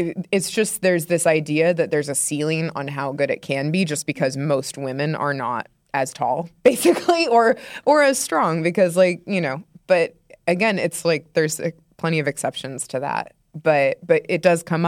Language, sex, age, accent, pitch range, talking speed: English, female, 20-39, American, 145-185 Hz, 190 wpm